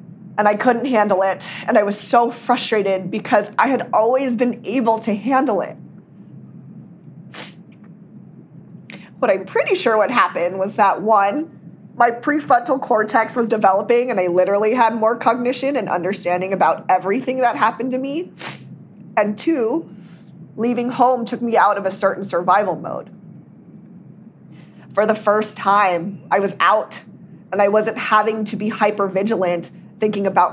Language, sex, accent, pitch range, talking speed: English, female, American, 190-235 Hz, 145 wpm